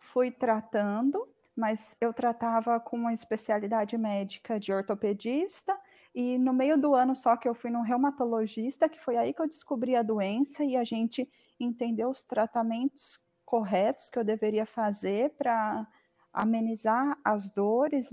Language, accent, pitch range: Portuguese, Brazilian, 230-280 Hz